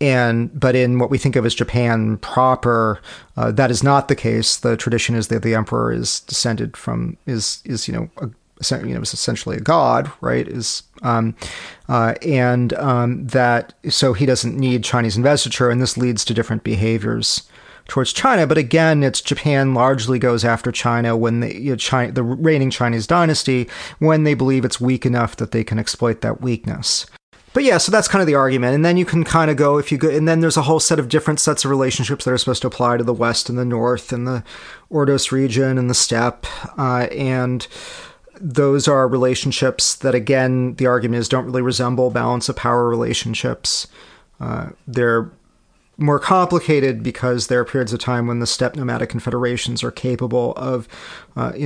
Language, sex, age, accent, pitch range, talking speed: English, male, 40-59, American, 120-135 Hz, 195 wpm